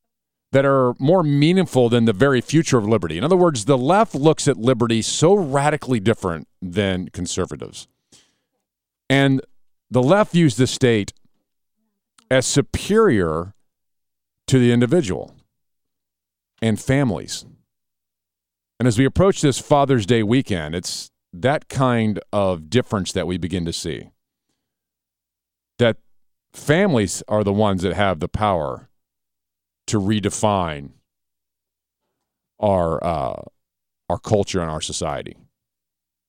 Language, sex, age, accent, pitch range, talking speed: English, male, 50-69, American, 90-135 Hz, 120 wpm